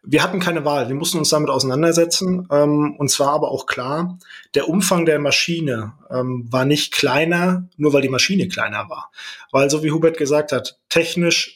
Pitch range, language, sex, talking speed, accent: 140-165 Hz, German, male, 175 wpm, German